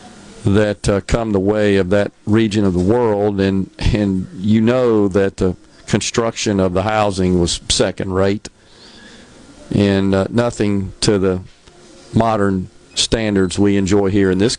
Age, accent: 50-69, American